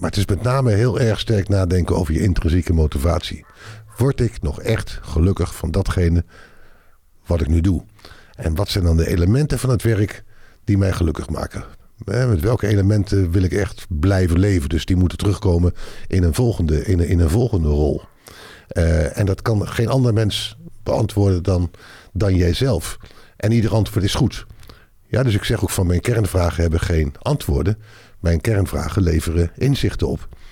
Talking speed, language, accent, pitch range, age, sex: 180 wpm, Dutch, Dutch, 85-105 Hz, 50-69, male